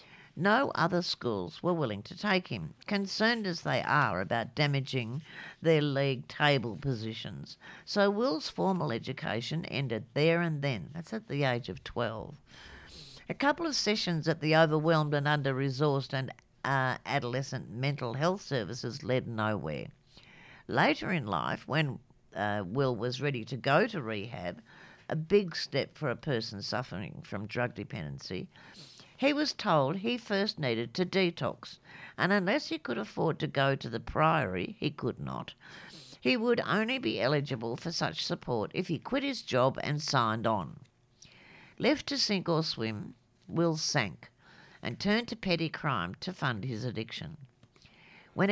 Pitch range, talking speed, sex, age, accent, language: 125-185 Hz, 155 wpm, female, 60-79, Australian, English